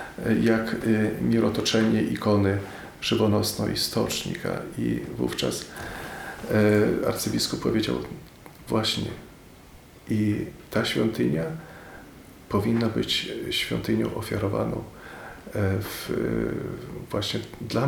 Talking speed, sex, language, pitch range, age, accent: 70 wpm, male, Polish, 100-120 Hz, 40-59, native